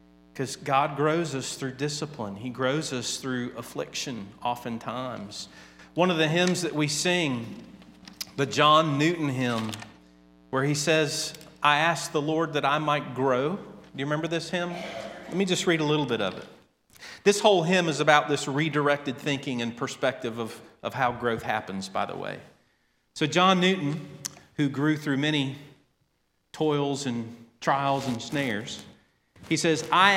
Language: English